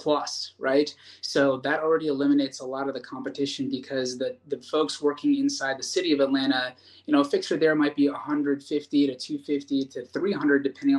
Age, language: 20-39, English